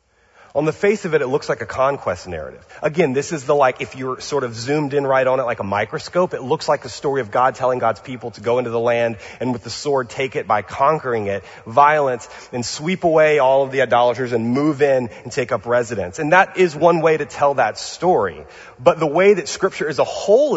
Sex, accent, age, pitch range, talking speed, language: male, American, 30-49, 120-165 Hz, 245 wpm, English